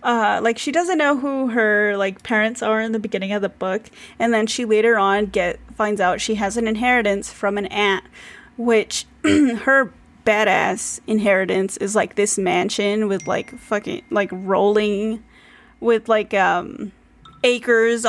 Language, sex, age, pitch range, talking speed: English, female, 20-39, 205-235 Hz, 160 wpm